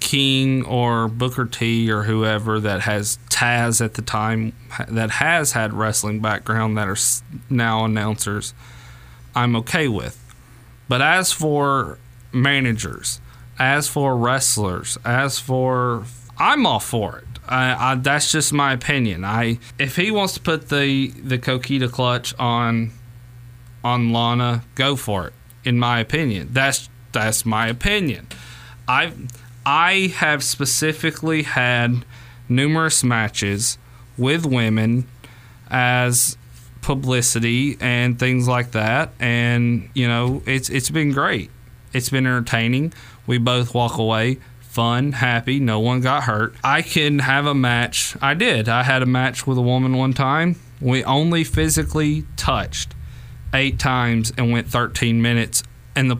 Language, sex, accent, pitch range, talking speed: English, male, American, 115-135 Hz, 140 wpm